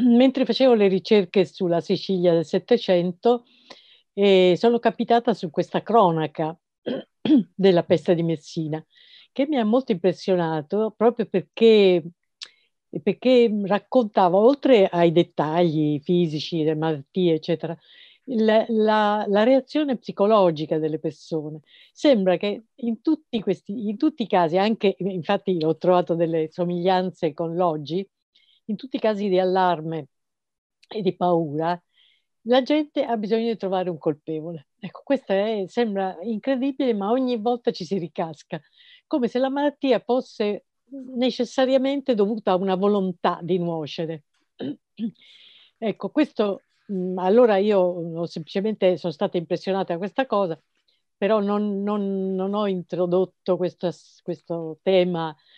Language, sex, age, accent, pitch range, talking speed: Italian, female, 50-69, native, 175-230 Hz, 125 wpm